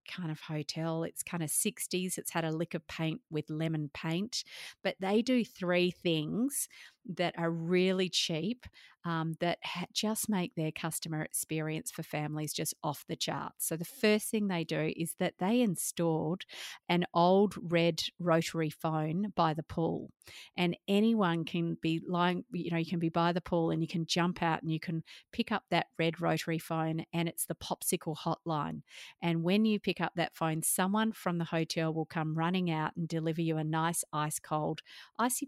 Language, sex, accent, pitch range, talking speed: English, female, Australian, 160-185 Hz, 190 wpm